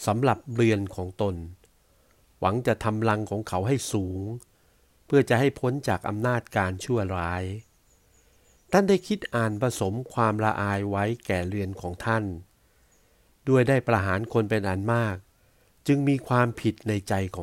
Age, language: 60-79, Thai